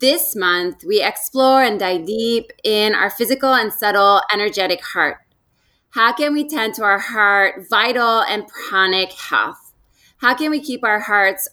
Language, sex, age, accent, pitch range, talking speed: English, female, 20-39, American, 195-245 Hz, 160 wpm